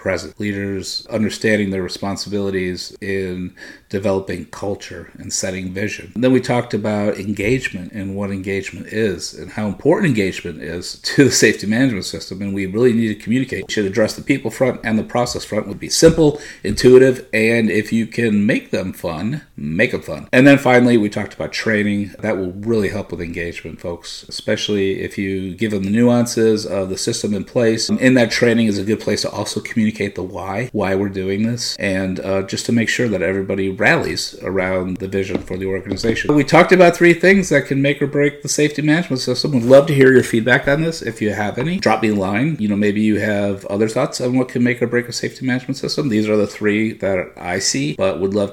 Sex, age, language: male, 50-69, English